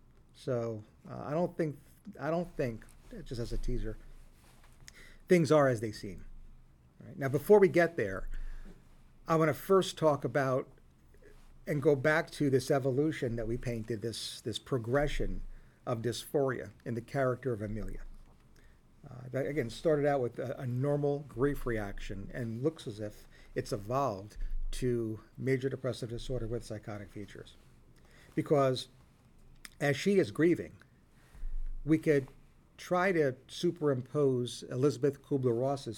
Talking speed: 140 wpm